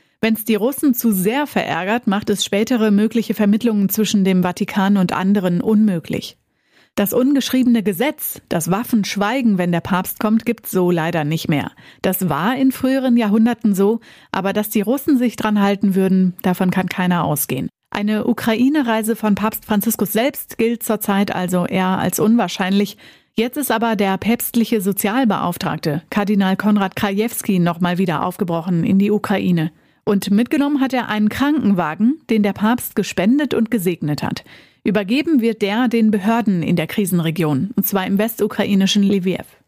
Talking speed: 155 wpm